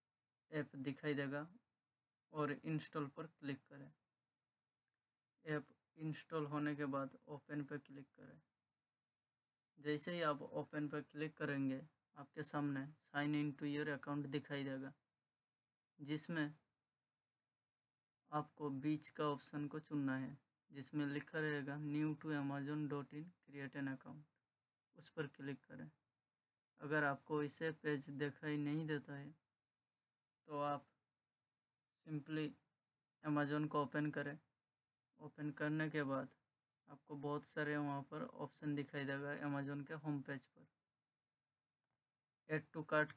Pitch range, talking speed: 140-150 Hz, 125 wpm